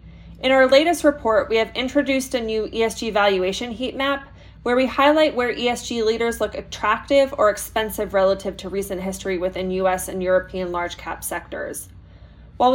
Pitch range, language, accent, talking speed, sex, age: 195-245 Hz, English, American, 165 wpm, female, 20-39